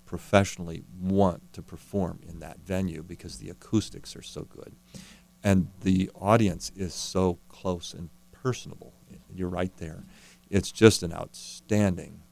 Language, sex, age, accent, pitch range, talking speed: English, male, 40-59, American, 85-95 Hz, 135 wpm